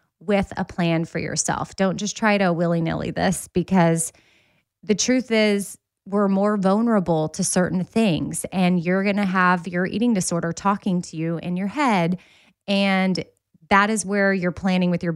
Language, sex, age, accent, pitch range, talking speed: English, female, 20-39, American, 165-200 Hz, 170 wpm